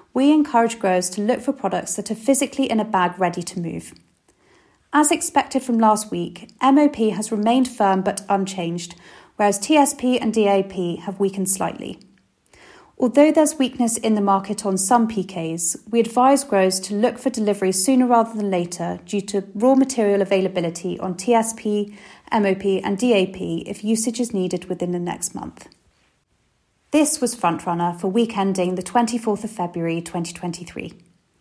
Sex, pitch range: female, 180-240 Hz